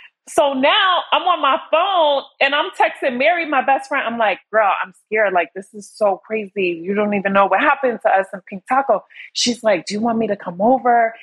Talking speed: 230 wpm